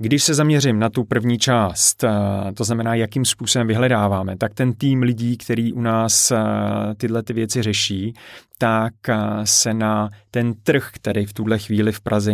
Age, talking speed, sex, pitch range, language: 30-49, 165 wpm, male, 105-120 Hz, Czech